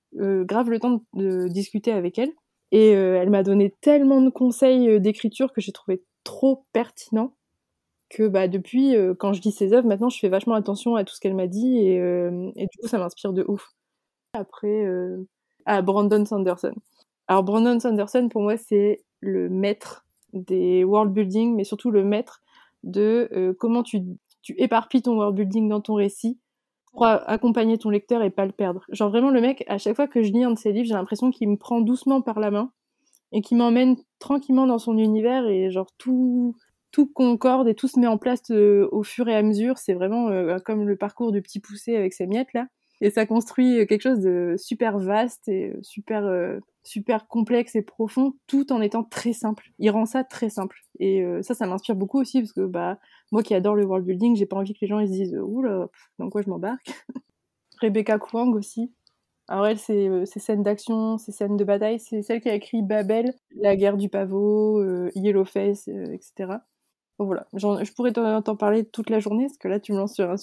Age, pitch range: 20-39, 200-240 Hz